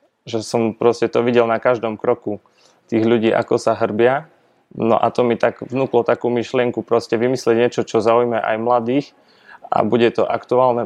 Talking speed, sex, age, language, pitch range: 175 wpm, male, 20-39, Slovak, 115-125 Hz